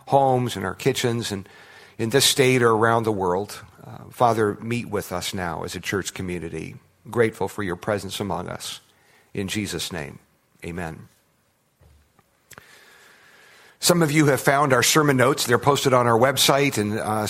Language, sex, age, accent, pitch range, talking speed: English, male, 50-69, American, 110-140 Hz, 165 wpm